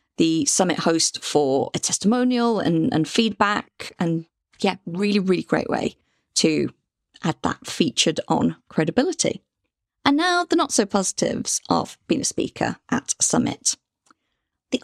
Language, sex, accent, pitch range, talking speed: English, female, British, 175-250 Hz, 140 wpm